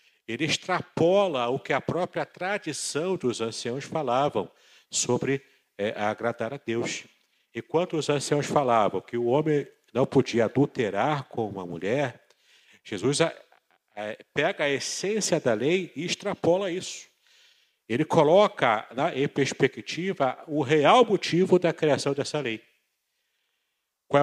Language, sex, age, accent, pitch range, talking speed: Portuguese, male, 50-69, Brazilian, 115-155 Hz, 130 wpm